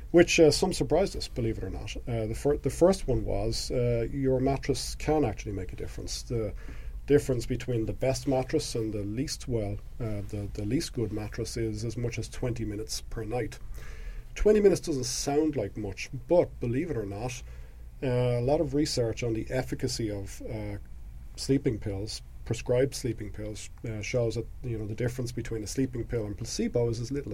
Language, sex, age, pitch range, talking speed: English, male, 40-59, 105-130 Hz, 200 wpm